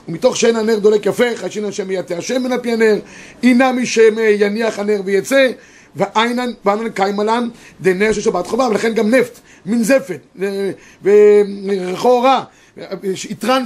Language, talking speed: Hebrew, 145 wpm